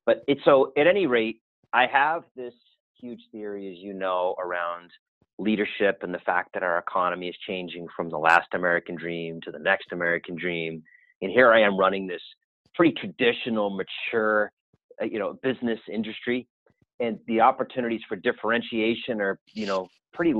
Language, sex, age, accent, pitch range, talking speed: English, male, 30-49, American, 95-120 Hz, 160 wpm